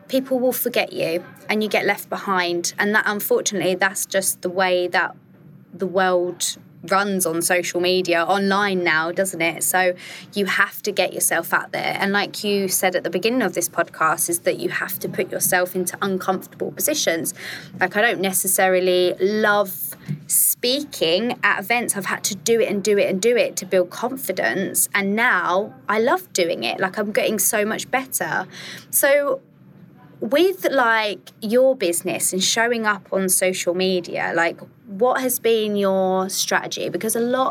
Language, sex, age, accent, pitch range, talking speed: English, female, 20-39, British, 180-210 Hz, 175 wpm